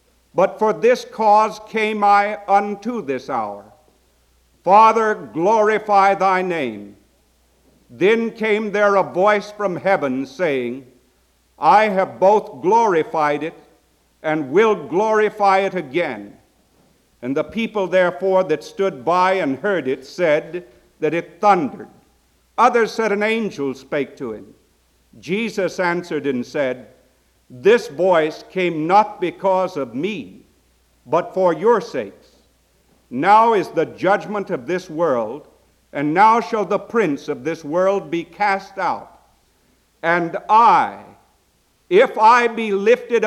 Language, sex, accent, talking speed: English, male, American, 125 wpm